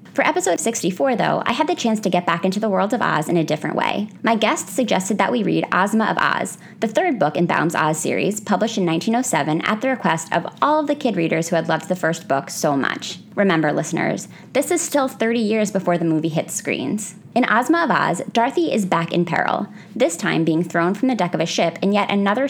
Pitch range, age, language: 165-230 Hz, 20-39, English